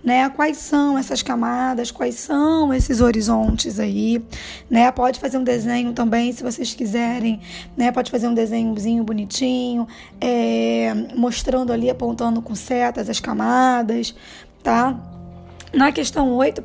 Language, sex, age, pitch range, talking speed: Portuguese, female, 10-29, 230-275 Hz, 130 wpm